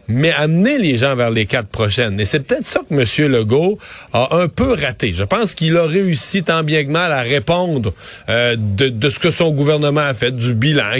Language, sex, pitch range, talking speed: French, male, 125-170 Hz, 225 wpm